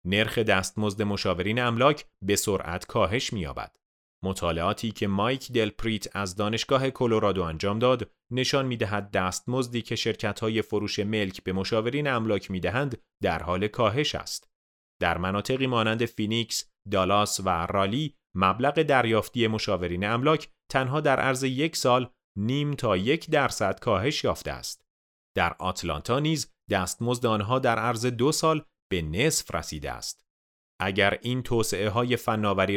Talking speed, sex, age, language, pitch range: 135 wpm, male, 30-49, Persian, 95-130 Hz